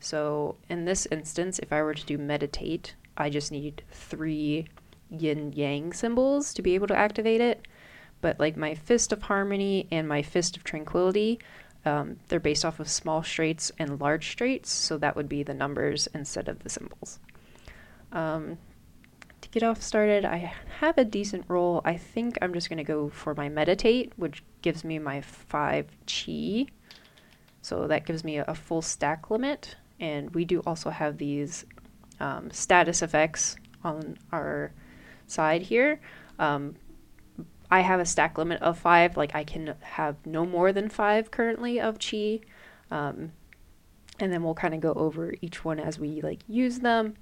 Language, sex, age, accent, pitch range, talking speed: English, female, 20-39, American, 150-190 Hz, 170 wpm